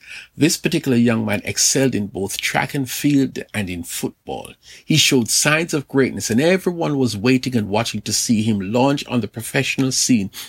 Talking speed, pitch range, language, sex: 185 wpm, 110-145 Hz, English, male